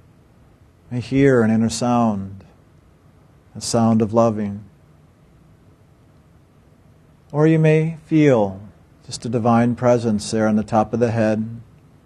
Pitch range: 105-135 Hz